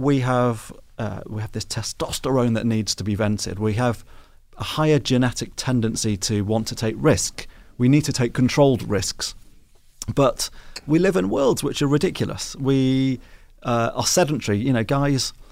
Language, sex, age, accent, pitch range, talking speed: English, male, 30-49, British, 110-140 Hz, 170 wpm